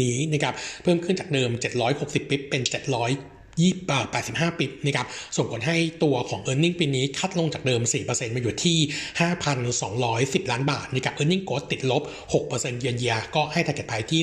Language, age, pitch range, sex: Thai, 60-79, 125-155 Hz, male